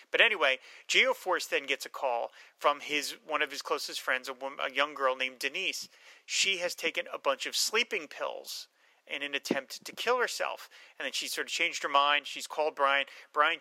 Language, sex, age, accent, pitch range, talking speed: English, male, 30-49, American, 135-160 Hz, 205 wpm